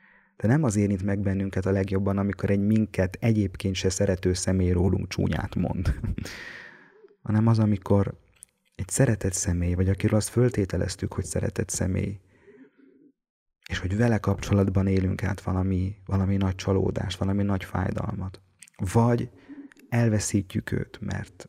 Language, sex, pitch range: Hungarian, male, 95-110 Hz